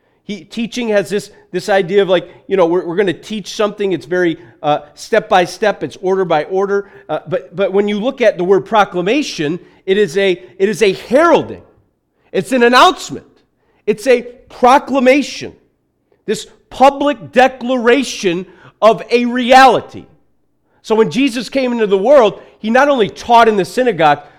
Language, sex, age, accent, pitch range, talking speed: English, male, 40-59, American, 190-250 Hz, 170 wpm